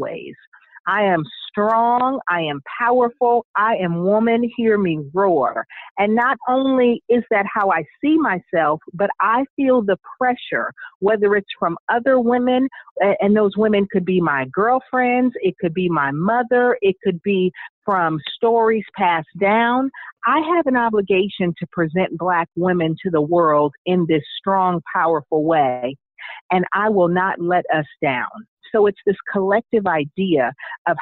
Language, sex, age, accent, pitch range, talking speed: English, female, 50-69, American, 175-240 Hz, 155 wpm